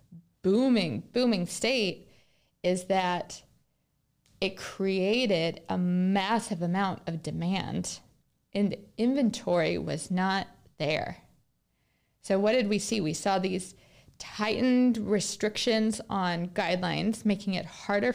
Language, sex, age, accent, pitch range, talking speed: English, female, 20-39, American, 185-230 Hz, 110 wpm